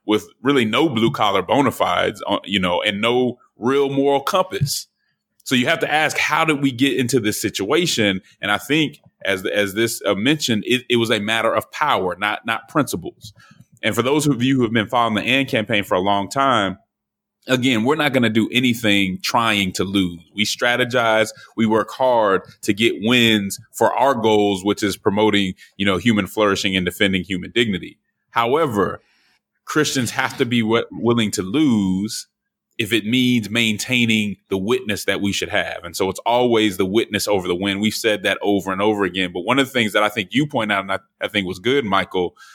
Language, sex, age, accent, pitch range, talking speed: English, male, 30-49, American, 100-125 Hz, 200 wpm